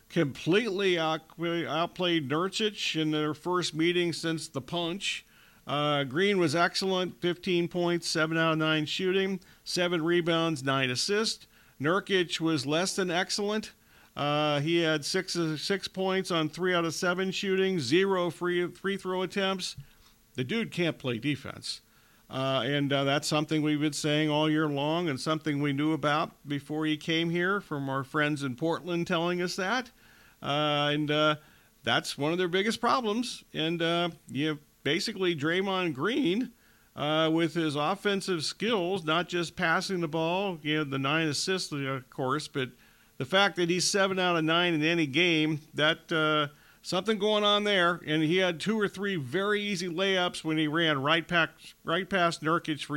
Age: 50-69